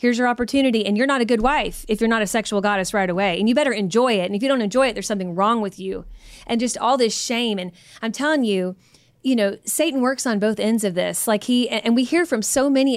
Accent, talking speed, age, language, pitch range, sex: American, 275 wpm, 20-39, English, 200-245 Hz, female